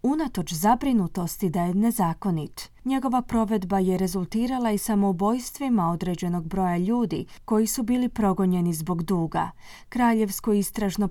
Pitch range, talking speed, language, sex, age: 185-235 Hz, 120 wpm, Croatian, female, 30-49